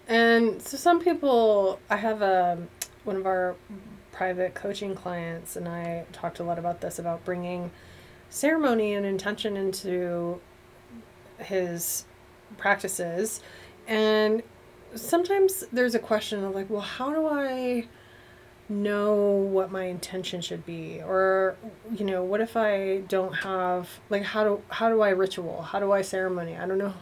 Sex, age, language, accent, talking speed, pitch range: female, 20-39, English, American, 150 wpm, 180-225 Hz